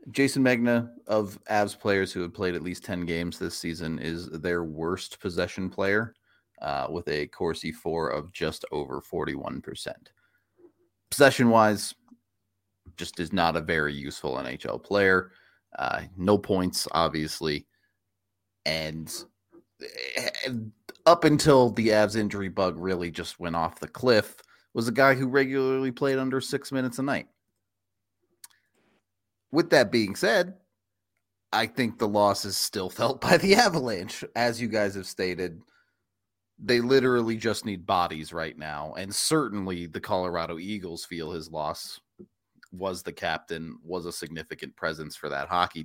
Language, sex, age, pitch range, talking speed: English, male, 30-49, 90-120 Hz, 145 wpm